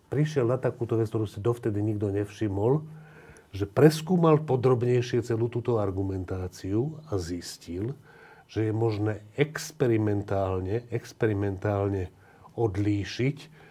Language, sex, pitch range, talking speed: Slovak, male, 105-145 Hz, 100 wpm